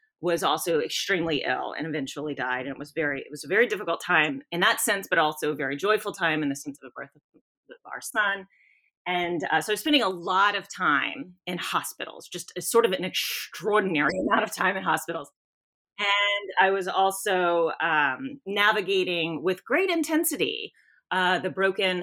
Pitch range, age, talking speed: 165-225 Hz, 30-49, 190 wpm